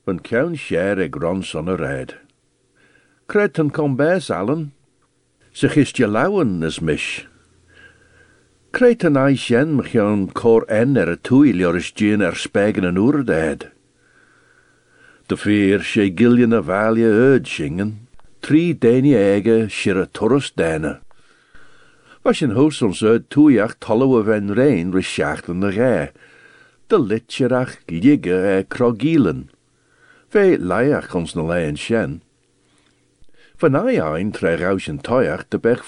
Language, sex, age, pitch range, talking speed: English, male, 60-79, 100-145 Hz, 105 wpm